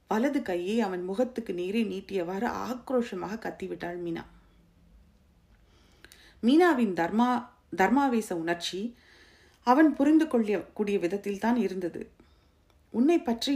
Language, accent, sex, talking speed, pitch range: Tamil, native, female, 95 wpm, 170-240 Hz